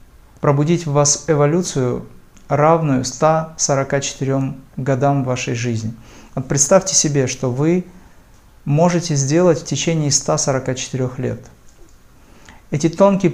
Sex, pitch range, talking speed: male, 125-155 Hz, 95 wpm